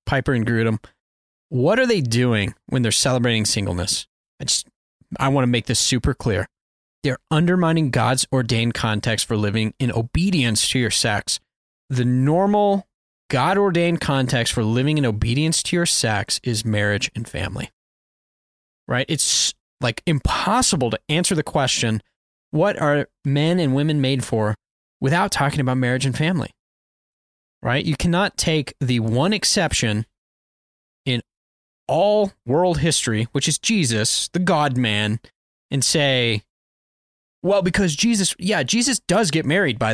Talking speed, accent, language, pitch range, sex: 145 wpm, American, English, 115-180 Hz, male